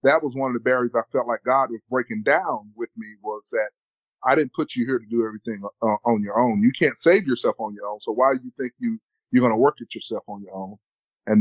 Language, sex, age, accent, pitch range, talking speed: English, male, 30-49, American, 115-140 Hz, 275 wpm